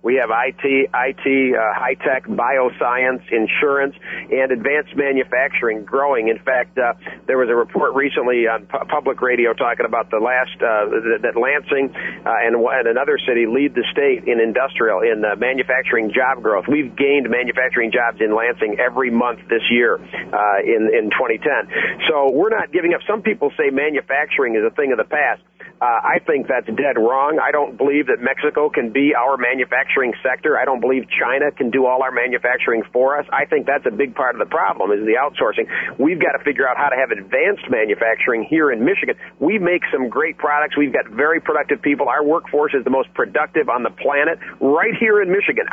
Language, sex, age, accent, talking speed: English, male, 50-69, American, 200 wpm